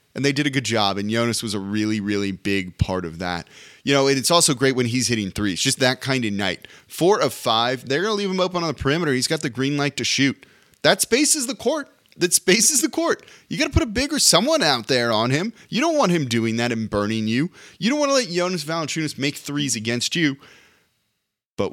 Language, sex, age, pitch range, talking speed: English, male, 20-39, 115-165 Hz, 245 wpm